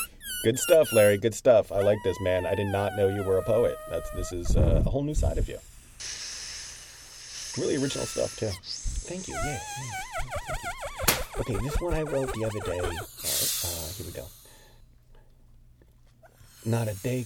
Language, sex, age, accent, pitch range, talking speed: English, male, 30-49, American, 100-165 Hz, 170 wpm